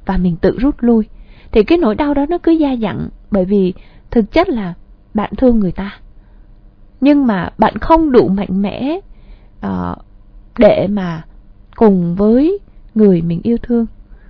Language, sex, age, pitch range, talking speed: Vietnamese, female, 20-39, 185-245 Hz, 165 wpm